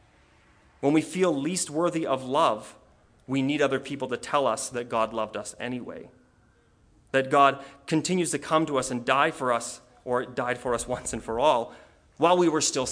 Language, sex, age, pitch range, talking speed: English, male, 30-49, 125-160 Hz, 195 wpm